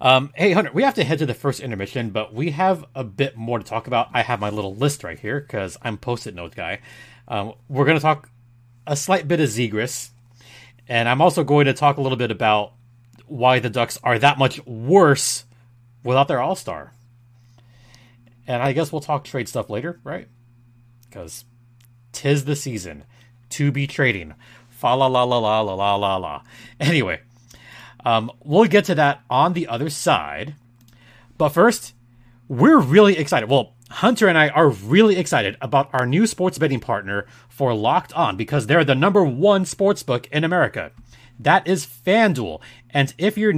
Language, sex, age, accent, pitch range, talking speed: English, male, 30-49, American, 120-155 Hz, 180 wpm